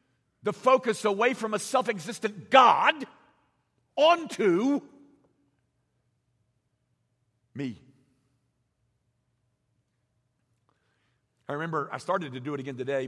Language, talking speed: English, 85 wpm